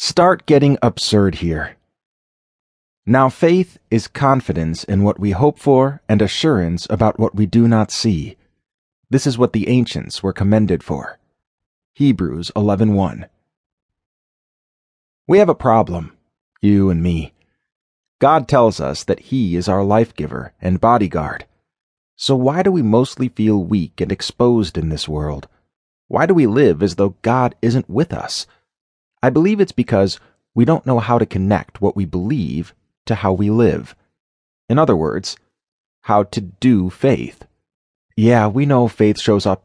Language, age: English, 30-49